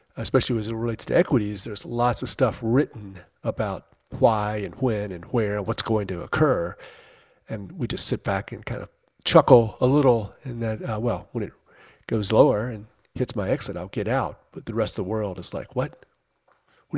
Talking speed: 205 wpm